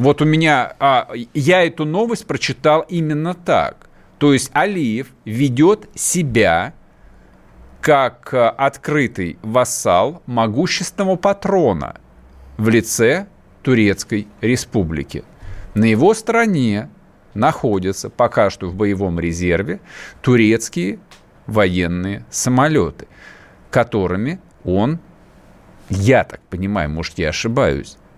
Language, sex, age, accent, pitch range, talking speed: Russian, male, 50-69, native, 100-135 Hz, 90 wpm